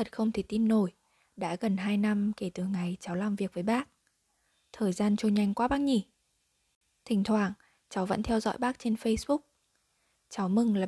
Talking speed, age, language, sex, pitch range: 200 wpm, 20-39, Vietnamese, female, 195-230 Hz